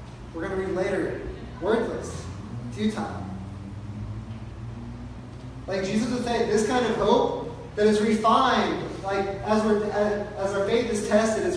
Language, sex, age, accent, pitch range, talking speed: English, male, 30-49, American, 150-215 Hz, 145 wpm